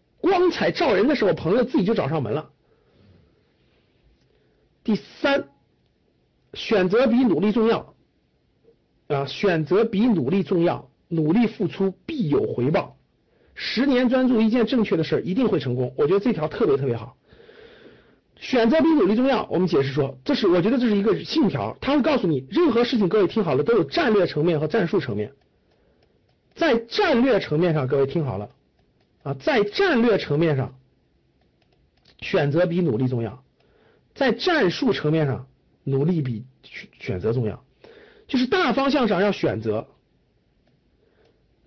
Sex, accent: male, native